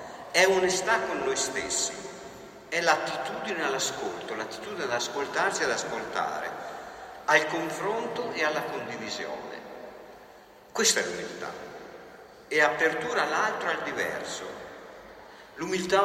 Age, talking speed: 50-69, 110 wpm